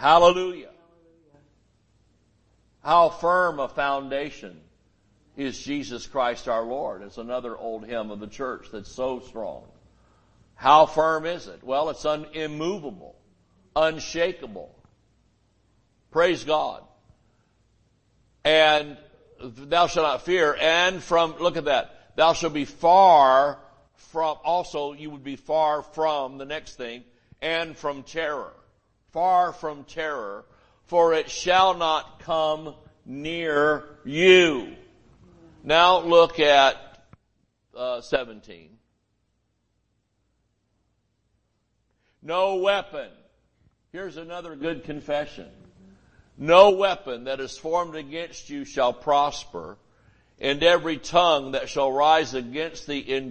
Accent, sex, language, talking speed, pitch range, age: American, male, English, 110 wpm, 115-160 Hz, 60-79